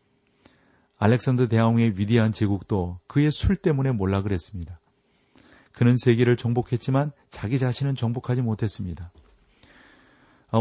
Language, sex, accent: Korean, male, native